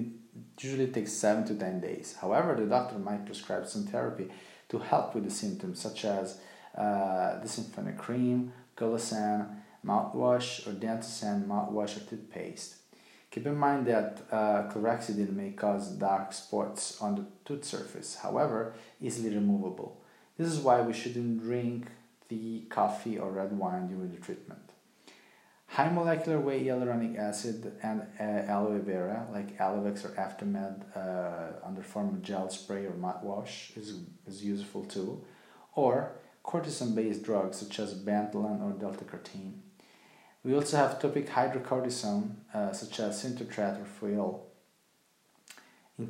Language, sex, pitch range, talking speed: Italian, male, 100-125 Hz, 140 wpm